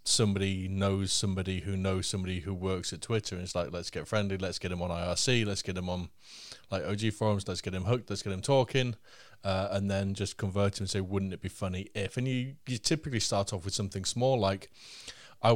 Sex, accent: male, British